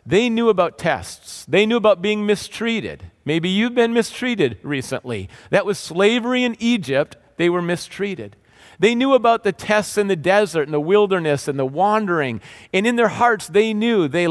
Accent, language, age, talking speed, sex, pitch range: American, English, 40-59, 180 wpm, male, 170-220 Hz